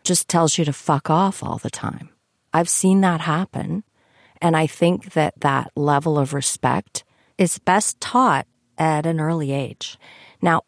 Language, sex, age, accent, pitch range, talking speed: English, female, 40-59, American, 140-180 Hz, 165 wpm